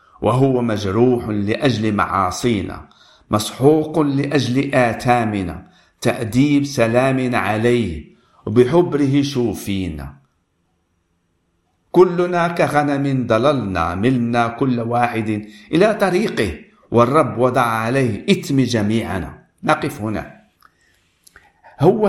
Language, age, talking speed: Arabic, 50-69, 75 wpm